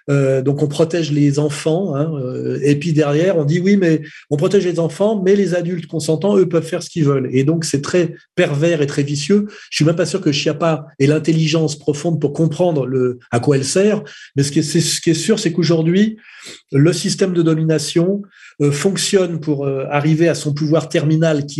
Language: French